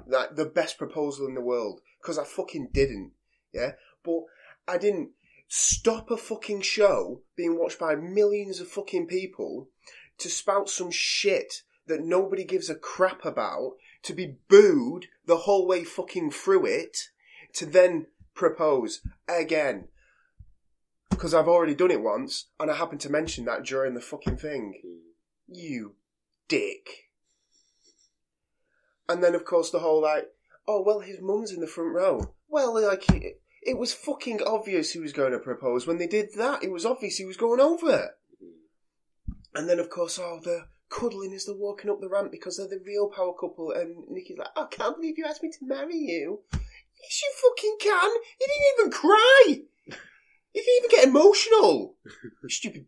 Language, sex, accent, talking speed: English, male, British, 170 wpm